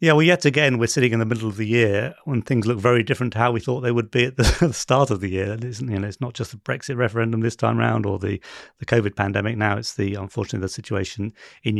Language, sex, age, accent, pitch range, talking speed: English, male, 30-49, British, 105-125 Hz, 280 wpm